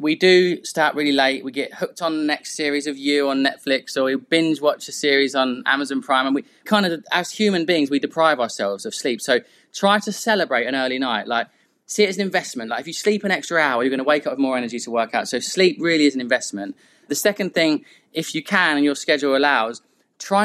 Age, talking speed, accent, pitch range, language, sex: 20-39, 250 wpm, British, 135-170 Hz, English, male